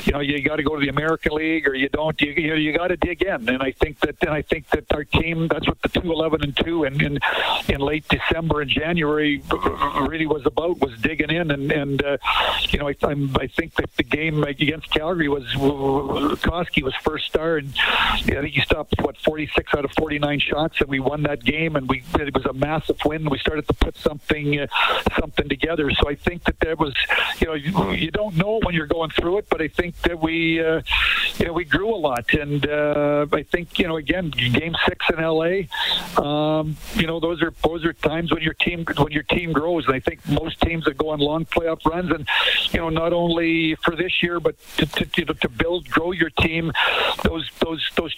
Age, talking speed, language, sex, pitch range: 50-69, 230 wpm, English, male, 145-170 Hz